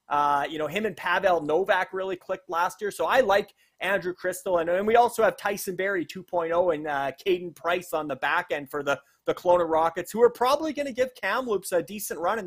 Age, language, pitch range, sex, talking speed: 30-49, English, 155-195 Hz, male, 230 wpm